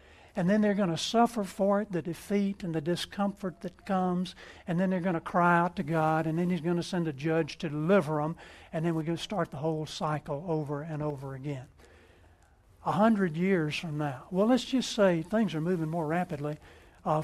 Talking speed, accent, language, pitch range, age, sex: 220 wpm, American, English, 155-200 Hz, 60-79, male